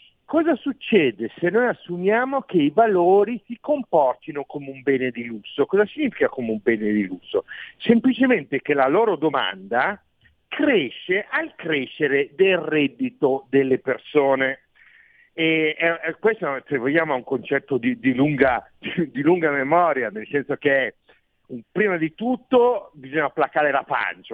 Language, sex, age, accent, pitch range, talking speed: Italian, male, 50-69, native, 135-215 Hz, 145 wpm